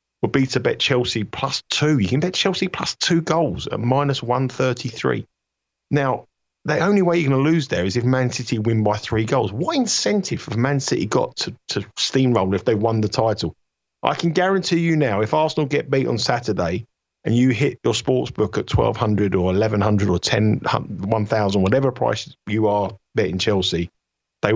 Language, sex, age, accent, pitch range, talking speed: English, male, 50-69, British, 100-135 Hz, 190 wpm